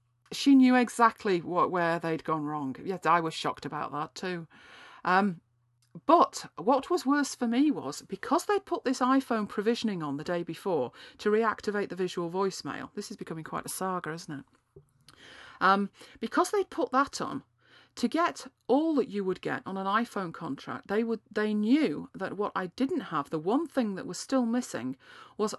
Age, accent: 40-59, British